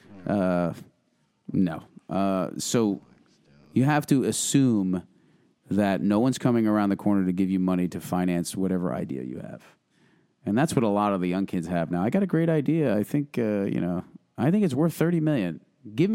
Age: 30-49